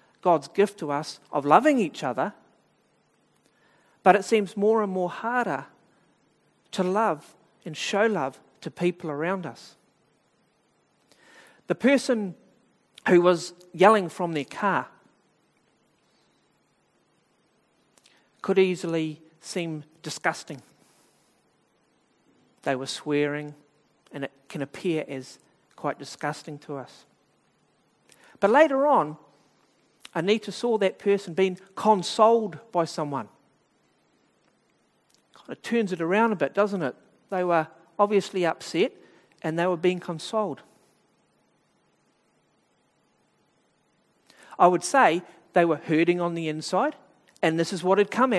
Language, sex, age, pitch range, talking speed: English, male, 50-69, 155-210 Hz, 115 wpm